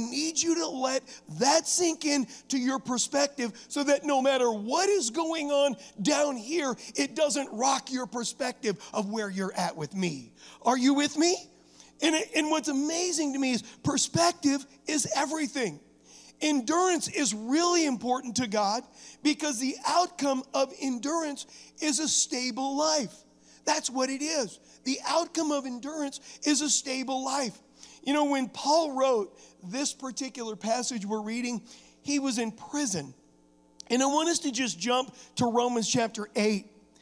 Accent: American